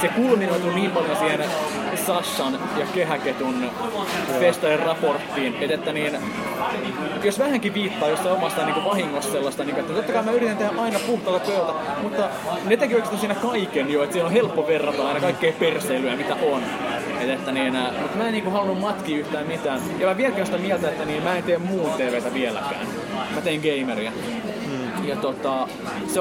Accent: native